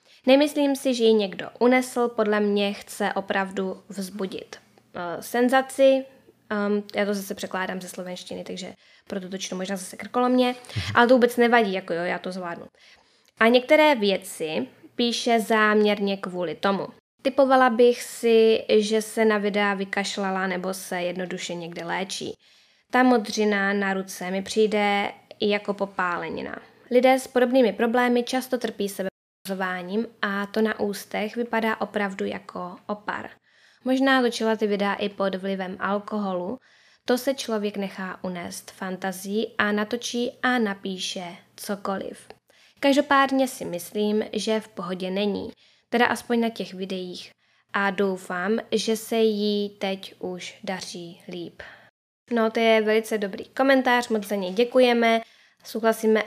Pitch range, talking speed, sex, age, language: 195-240 Hz, 135 wpm, female, 20-39, Czech